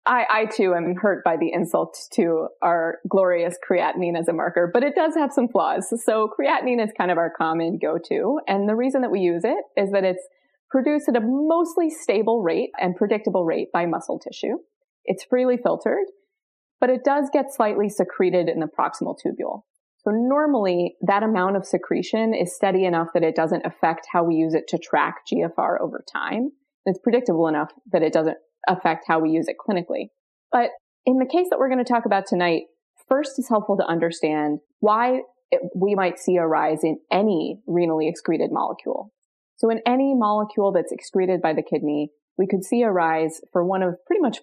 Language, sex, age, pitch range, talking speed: English, female, 20-39, 170-250 Hz, 195 wpm